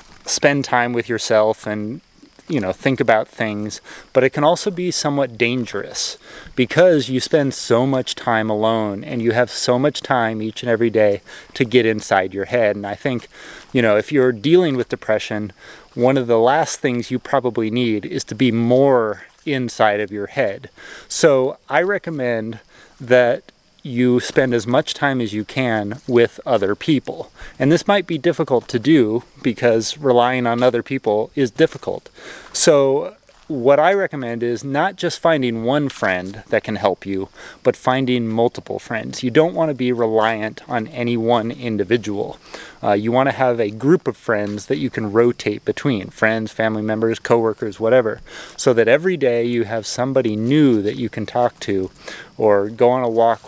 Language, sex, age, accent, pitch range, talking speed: English, male, 30-49, American, 110-135 Hz, 180 wpm